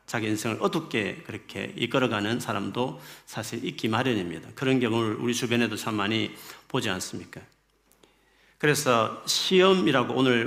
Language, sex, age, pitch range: Korean, male, 40-59, 105-145 Hz